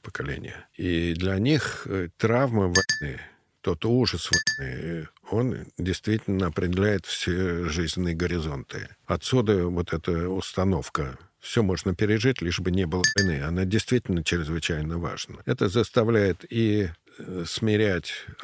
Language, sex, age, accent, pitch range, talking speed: Russian, male, 50-69, native, 90-125 Hz, 115 wpm